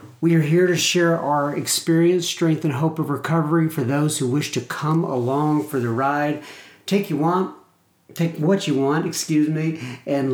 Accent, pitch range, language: American, 130-165 Hz, English